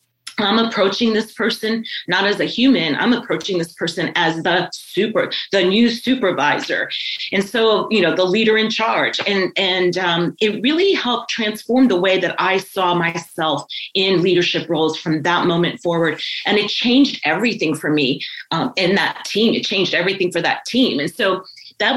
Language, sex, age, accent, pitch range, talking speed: English, female, 30-49, American, 175-220 Hz, 180 wpm